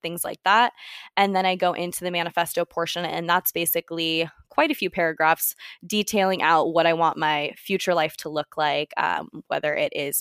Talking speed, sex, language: 195 wpm, female, English